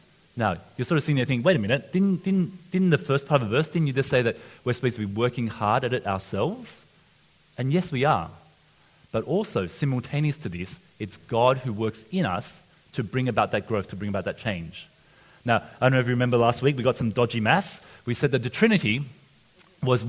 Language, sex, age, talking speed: English, male, 30-49, 230 wpm